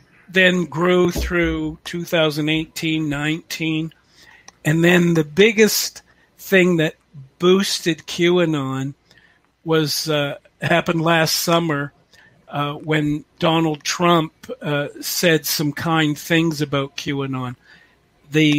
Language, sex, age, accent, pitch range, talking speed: English, male, 50-69, American, 150-175 Hz, 95 wpm